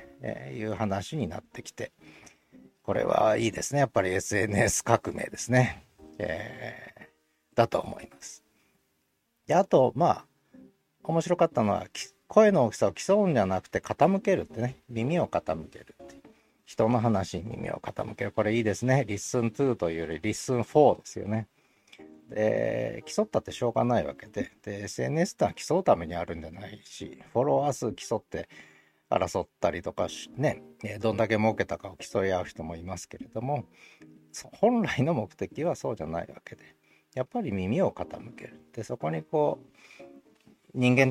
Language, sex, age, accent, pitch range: Japanese, male, 40-59, native, 85-130 Hz